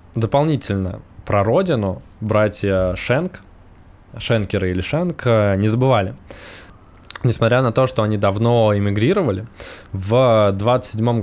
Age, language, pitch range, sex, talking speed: 20-39, Russian, 95-115 Hz, male, 100 wpm